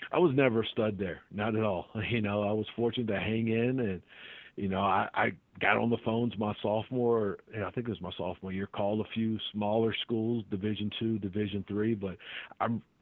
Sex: male